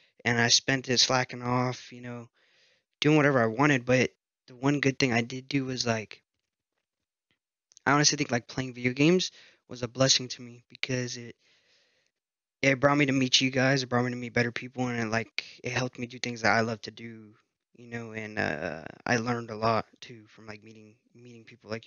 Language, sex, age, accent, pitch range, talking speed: English, male, 20-39, American, 120-135 Hz, 215 wpm